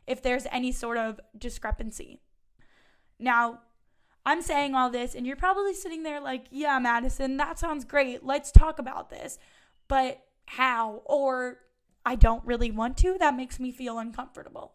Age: 10-29